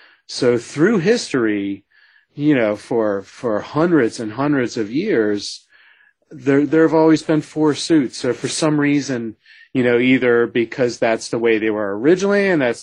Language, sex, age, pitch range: English, male, 40-59, 115-145 Hz